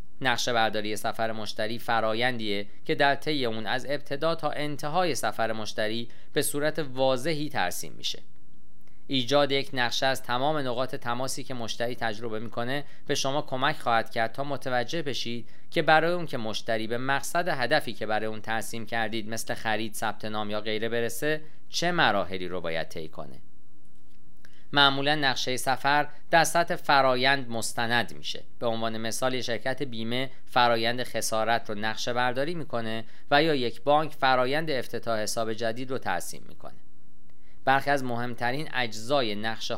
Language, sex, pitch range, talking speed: Persian, male, 115-140 Hz, 150 wpm